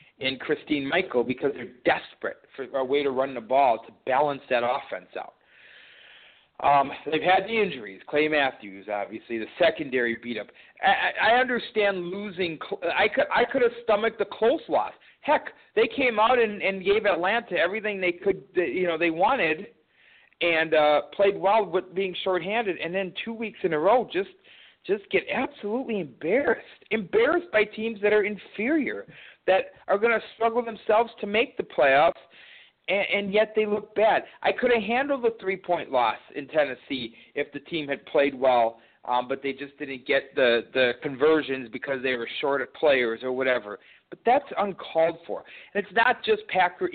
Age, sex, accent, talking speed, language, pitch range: 40-59, male, American, 180 wpm, English, 145-225 Hz